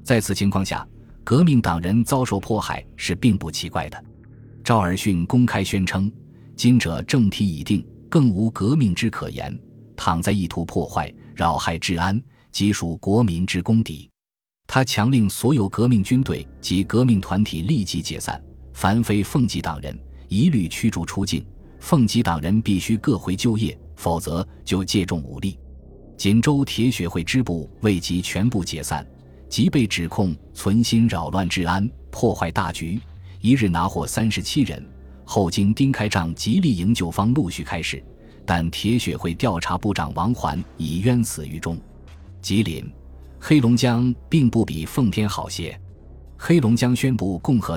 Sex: male